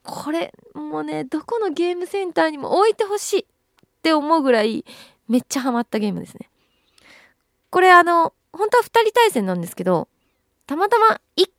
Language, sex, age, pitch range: Japanese, female, 20-39, 220-335 Hz